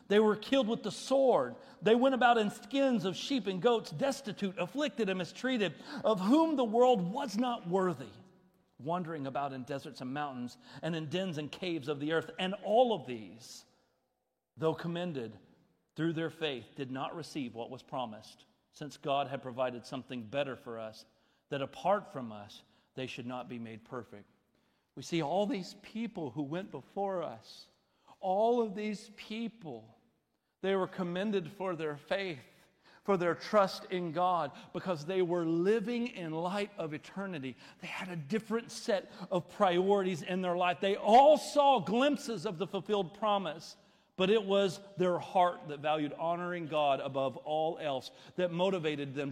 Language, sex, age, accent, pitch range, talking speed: English, male, 40-59, American, 150-220 Hz, 170 wpm